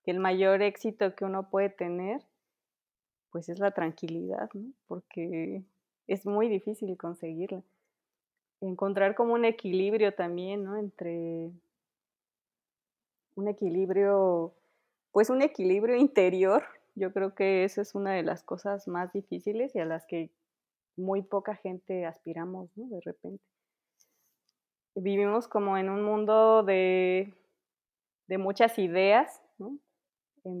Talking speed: 125 wpm